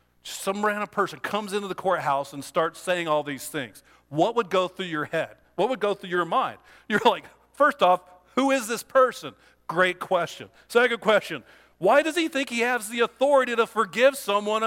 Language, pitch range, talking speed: English, 165-230 Hz, 195 wpm